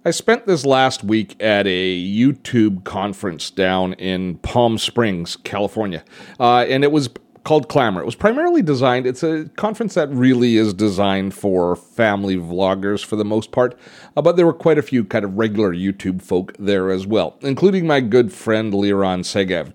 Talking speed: 180 wpm